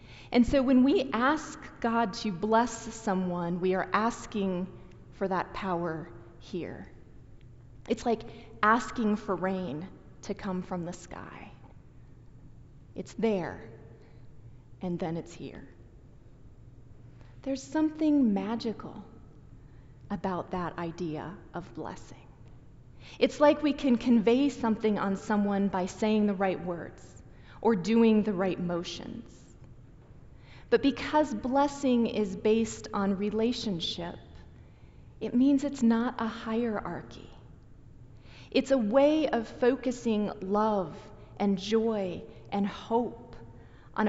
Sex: female